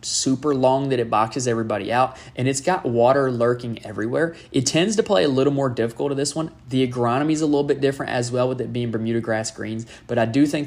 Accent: American